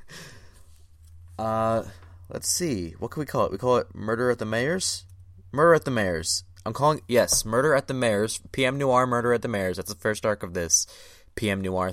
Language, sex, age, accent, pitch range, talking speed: English, male, 20-39, American, 90-120 Hz, 200 wpm